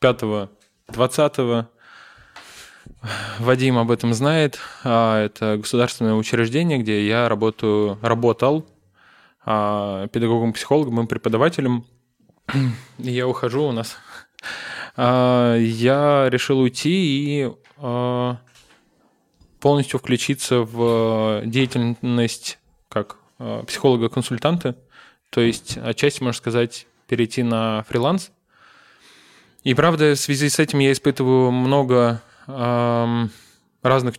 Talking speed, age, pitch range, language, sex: 85 wpm, 20-39, 115-135 Hz, Russian, male